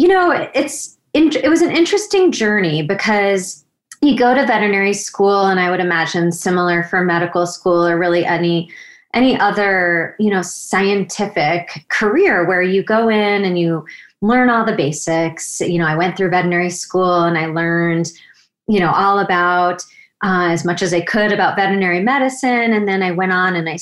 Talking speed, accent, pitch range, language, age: 180 wpm, American, 175-215 Hz, English, 30-49